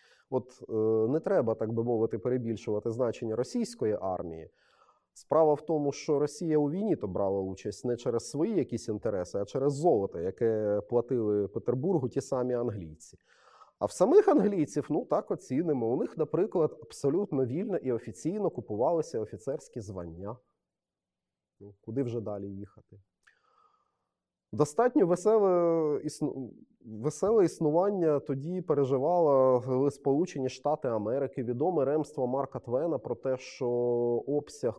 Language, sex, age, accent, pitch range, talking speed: Ukrainian, male, 30-49, native, 115-145 Hz, 125 wpm